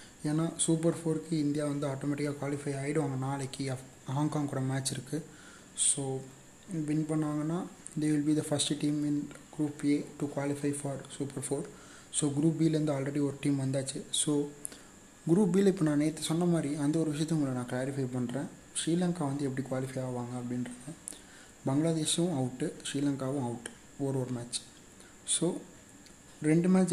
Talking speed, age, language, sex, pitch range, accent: 150 wpm, 30-49, Tamil, male, 135-155 Hz, native